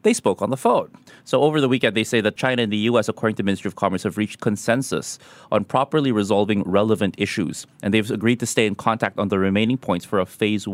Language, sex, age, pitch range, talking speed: English, male, 30-49, 95-120 Hz, 240 wpm